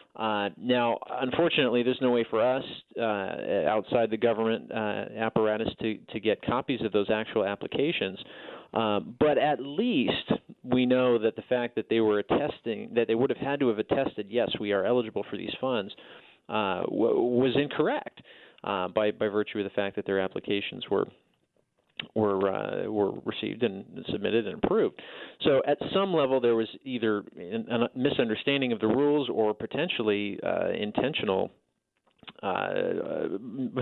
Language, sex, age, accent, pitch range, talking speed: English, male, 40-59, American, 110-125 Hz, 160 wpm